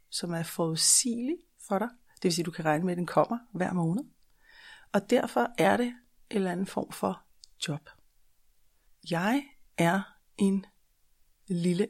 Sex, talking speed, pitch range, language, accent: female, 155 wpm, 170-200 Hz, Danish, native